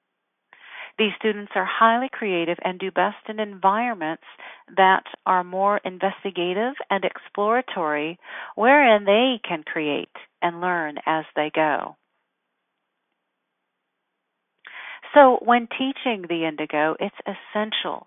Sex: female